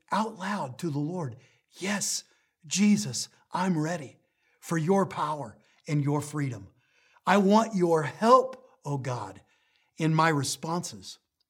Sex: male